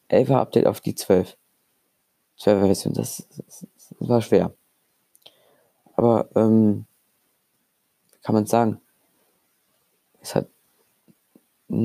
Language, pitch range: German, 110-125 Hz